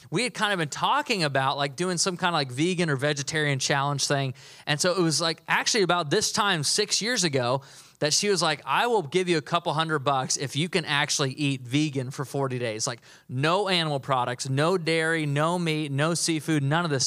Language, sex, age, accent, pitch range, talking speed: English, male, 20-39, American, 145-180 Hz, 225 wpm